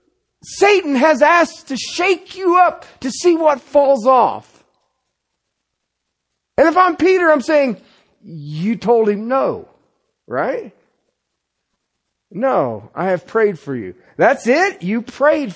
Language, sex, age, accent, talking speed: English, male, 50-69, American, 125 wpm